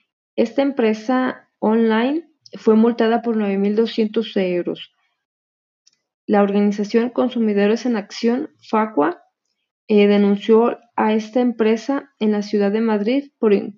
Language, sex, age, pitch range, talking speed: Spanish, female, 30-49, 200-230 Hz, 110 wpm